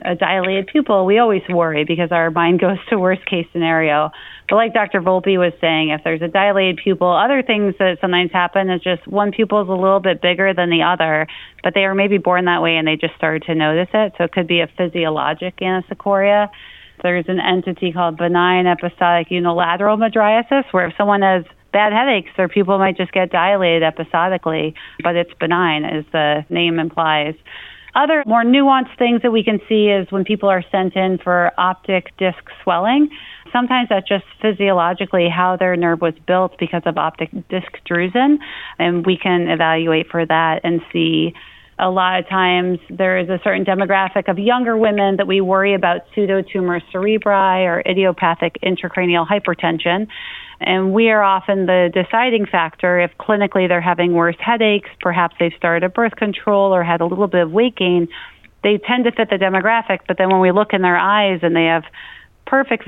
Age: 30-49